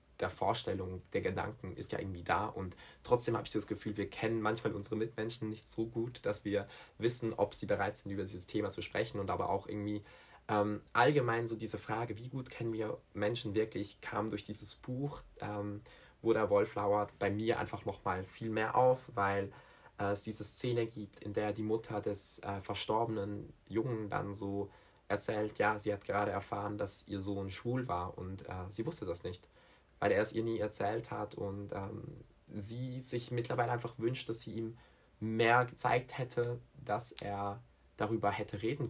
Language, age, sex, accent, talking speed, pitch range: German, 20-39, male, German, 190 wpm, 100-115 Hz